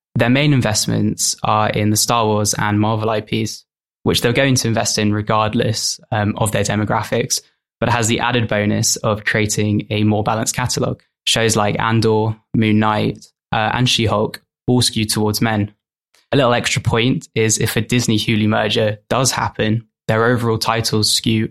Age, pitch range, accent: 10-29, 110-125 Hz, British